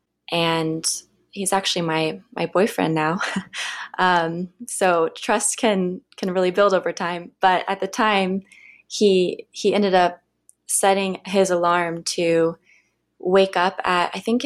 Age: 20-39